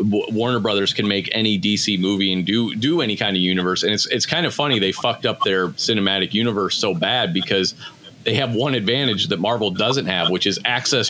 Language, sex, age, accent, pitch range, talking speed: English, male, 40-59, American, 85-110 Hz, 215 wpm